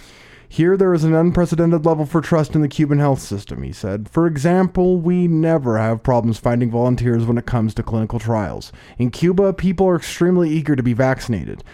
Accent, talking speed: American, 195 wpm